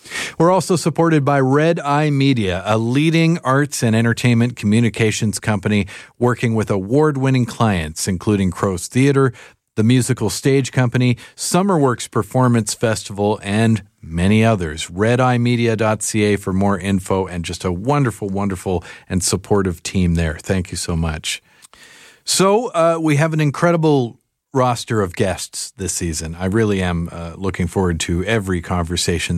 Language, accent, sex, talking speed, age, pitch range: English, American, male, 140 wpm, 40-59, 95-130 Hz